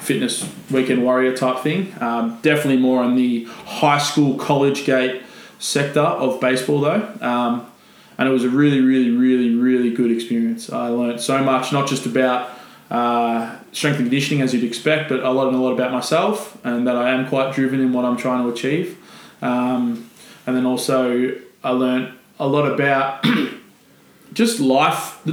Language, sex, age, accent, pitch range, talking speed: English, male, 20-39, Australian, 125-145 Hz, 175 wpm